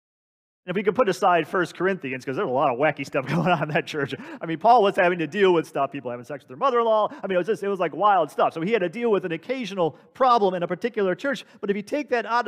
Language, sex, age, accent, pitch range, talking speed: English, male, 40-59, American, 175-245 Hz, 295 wpm